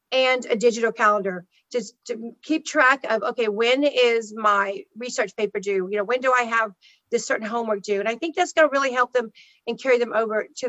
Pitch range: 220-285 Hz